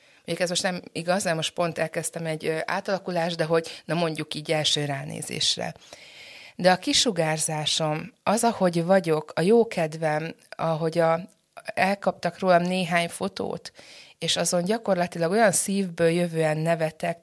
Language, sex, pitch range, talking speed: Hungarian, female, 160-195 Hz, 135 wpm